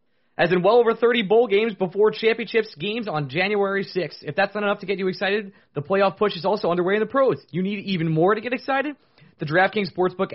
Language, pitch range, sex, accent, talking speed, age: English, 155-200 Hz, male, American, 230 wpm, 20-39